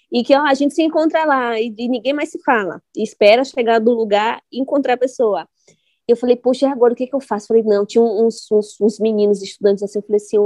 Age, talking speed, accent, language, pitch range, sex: 20-39, 265 wpm, Brazilian, Portuguese, 210-255 Hz, female